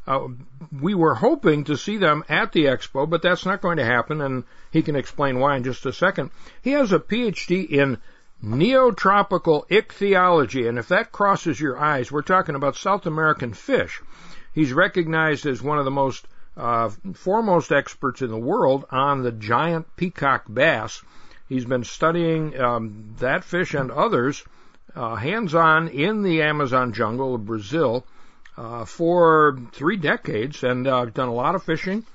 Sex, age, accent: male, 60-79, American